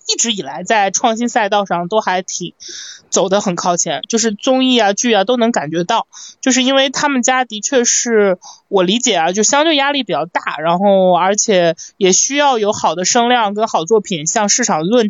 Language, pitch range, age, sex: Chinese, 195-265 Hz, 20-39, male